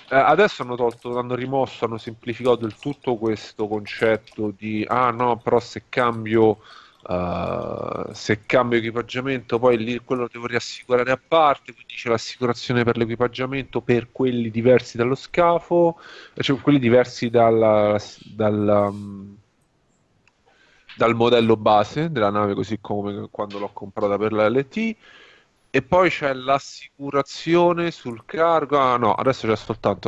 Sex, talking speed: male, 130 wpm